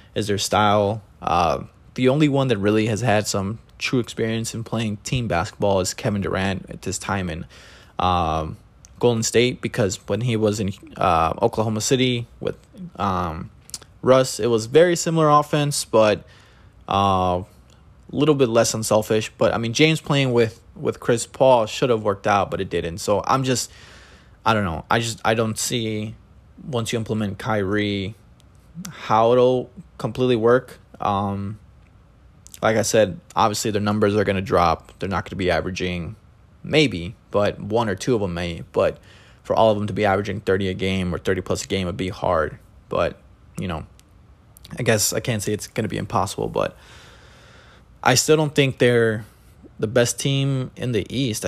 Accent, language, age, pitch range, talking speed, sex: American, English, 20-39, 95-120 Hz, 180 wpm, male